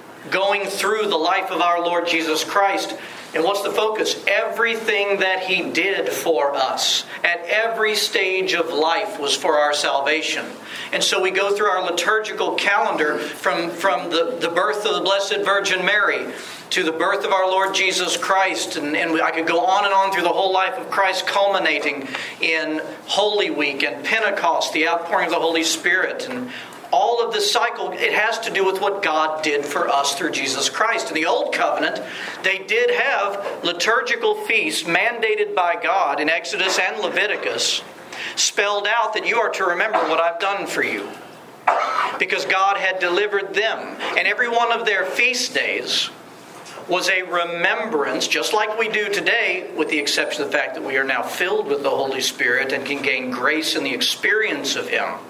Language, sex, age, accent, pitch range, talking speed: English, male, 40-59, American, 165-210 Hz, 185 wpm